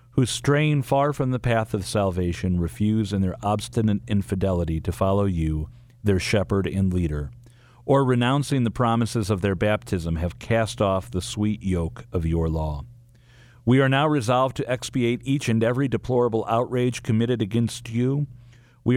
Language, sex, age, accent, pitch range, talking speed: English, male, 40-59, American, 100-120 Hz, 160 wpm